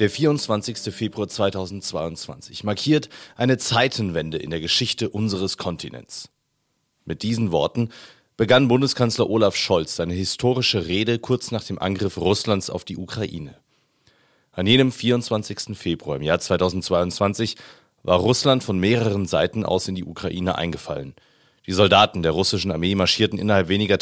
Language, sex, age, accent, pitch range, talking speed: German, male, 30-49, German, 90-120 Hz, 135 wpm